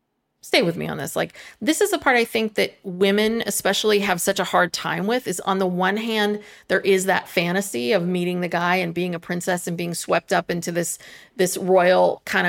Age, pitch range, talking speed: 30-49, 175-200 Hz, 225 wpm